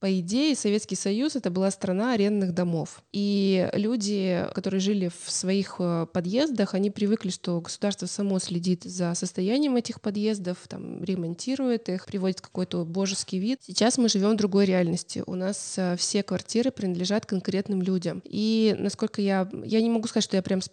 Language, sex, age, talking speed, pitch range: Russian, female, 20-39, 170 wpm, 180-215 Hz